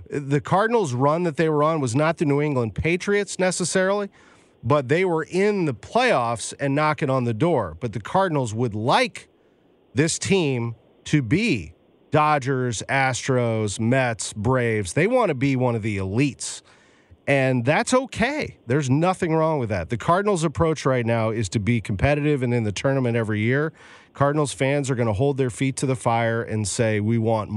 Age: 40-59